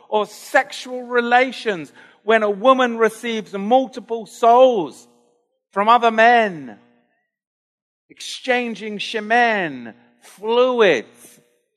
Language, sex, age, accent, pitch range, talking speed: English, male, 50-69, British, 210-265 Hz, 75 wpm